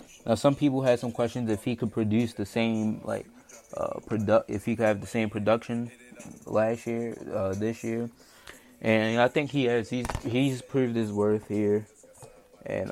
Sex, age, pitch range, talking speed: male, 20-39, 105-120 Hz, 180 wpm